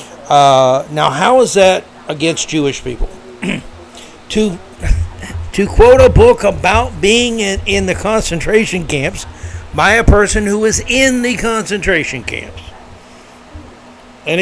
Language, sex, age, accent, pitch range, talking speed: English, male, 60-79, American, 120-180 Hz, 125 wpm